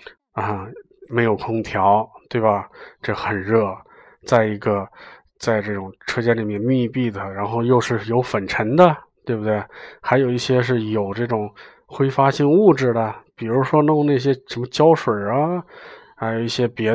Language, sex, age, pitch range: Chinese, male, 20-39, 105-120 Hz